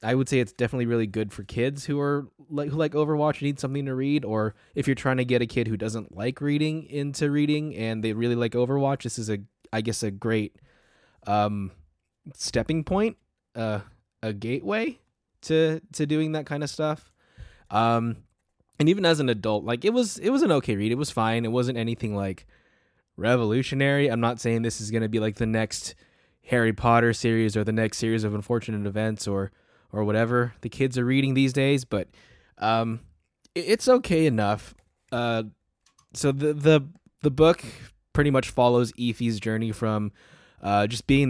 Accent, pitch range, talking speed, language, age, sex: American, 105-135 Hz, 190 wpm, English, 20-39, male